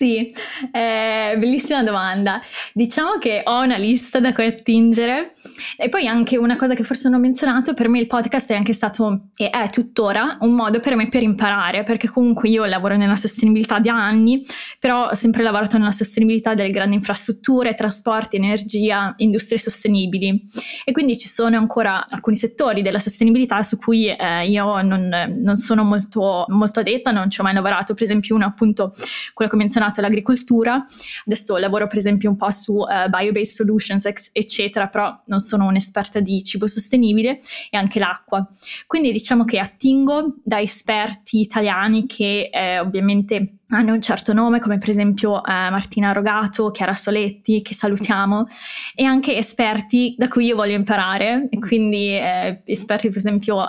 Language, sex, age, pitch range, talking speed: Italian, female, 20-39, 205-230 Hz, 170 wpm